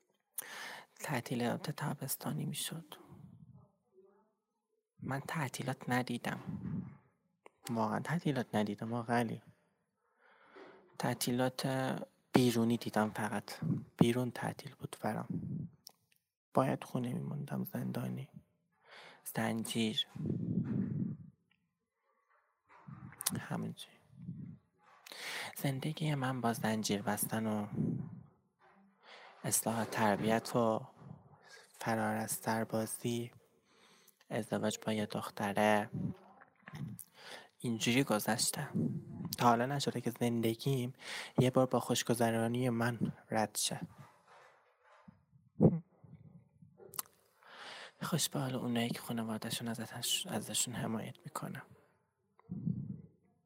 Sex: male